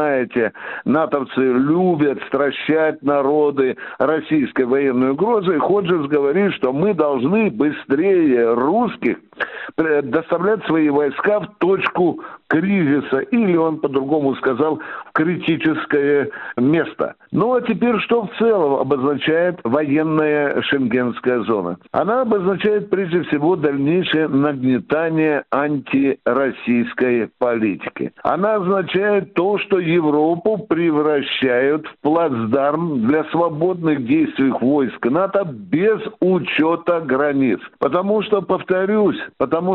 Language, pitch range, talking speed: Russian, 135-180 Hz, 100 wpm